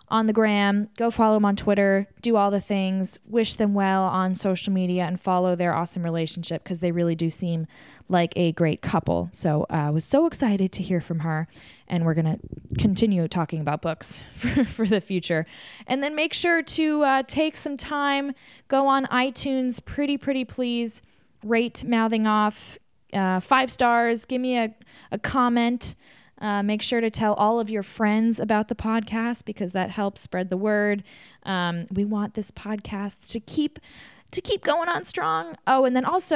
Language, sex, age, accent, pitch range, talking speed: English, female, 10-29, American, 180-235 Hz, 185 wpm